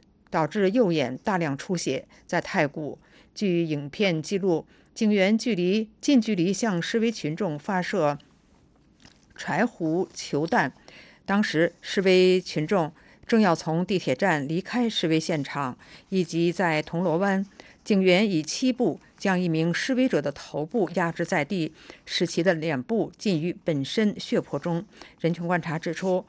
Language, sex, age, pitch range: English, female, 50-69, 160-210 Hz